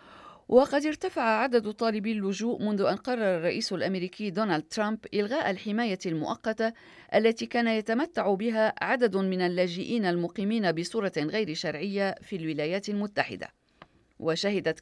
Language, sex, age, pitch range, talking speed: Arabic, female, 40-59, 180-225 Hz, 120 wpm